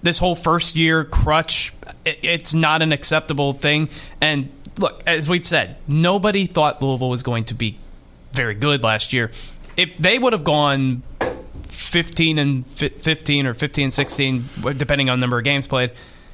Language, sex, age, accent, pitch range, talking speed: English, male, 20-39, American, 130-180 Hz, 165 wpm